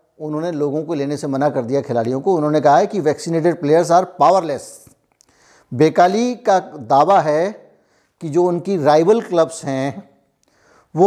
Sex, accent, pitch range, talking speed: male, native, 145-185 Hz, 155 wpm